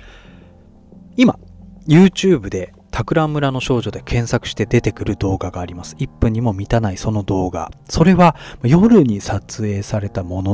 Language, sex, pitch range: Japanese, male, 100-165 Hz